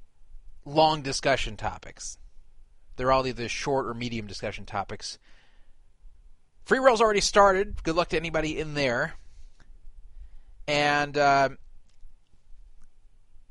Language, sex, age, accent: English, male, 30-49, American